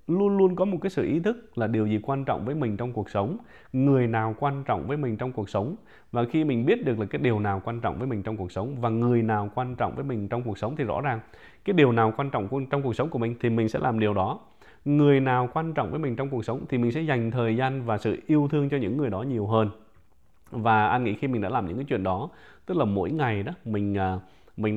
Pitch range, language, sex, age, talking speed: 105-135 Hz, English, male, 20-39, 280 wpm